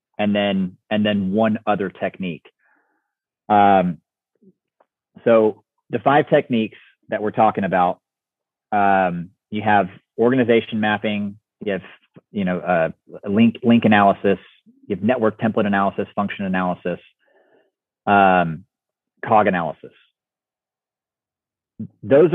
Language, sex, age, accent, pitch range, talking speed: English, male, 30-49, American, 100-115 Hz, 105 wpm